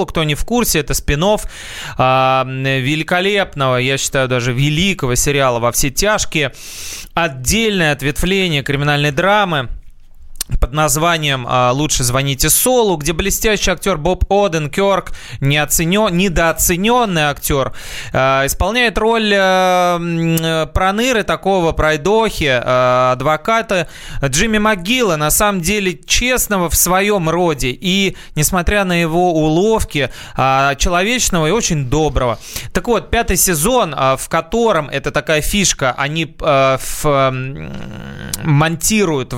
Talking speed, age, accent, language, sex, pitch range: 100 wpm, 20-39, native, Russian, male, 135-190 Hz